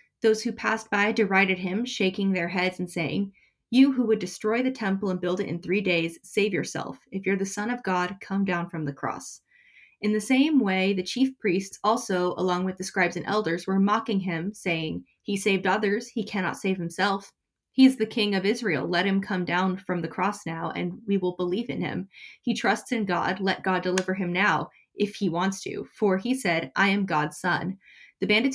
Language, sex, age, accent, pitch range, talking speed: English, female, 20-39, American, 180-215 Hz, 215 wpm